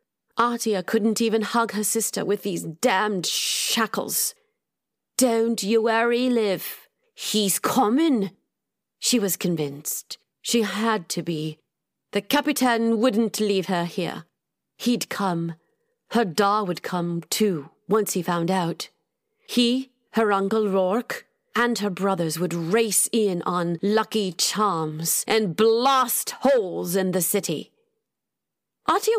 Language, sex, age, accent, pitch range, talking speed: English, female, 30-49, British, 180-235 Hz, 125 wpm